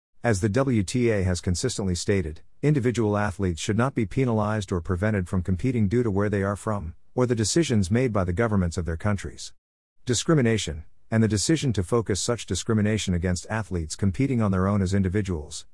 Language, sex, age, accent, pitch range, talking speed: English, male, 50-69, American, 90-115 Hz, 185 wpm